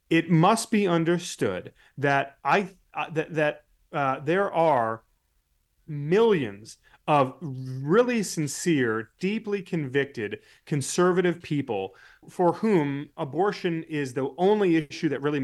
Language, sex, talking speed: English, male, 110 wpm